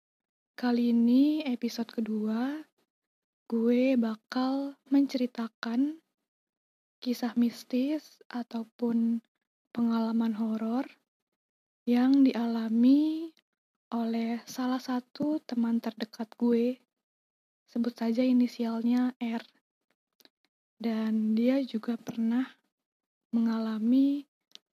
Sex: female